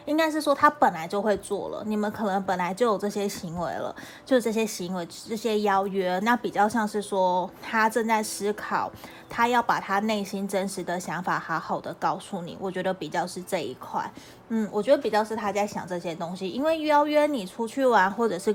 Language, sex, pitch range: Chinese, female, 190-235 Hz